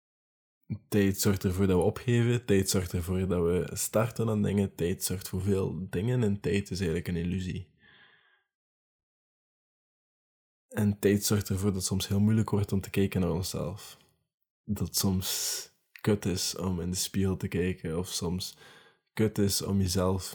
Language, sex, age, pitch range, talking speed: Dutch, male, 20-39, 90-100 Hz, 165 wpm